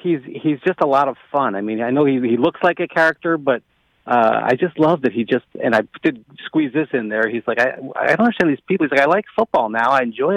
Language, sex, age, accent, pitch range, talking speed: English, male, 40-59, American, 125-160 Hz, 280 wpm